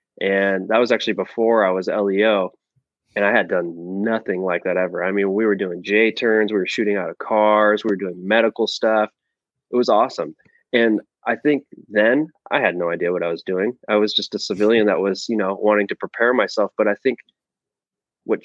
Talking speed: 215 wpm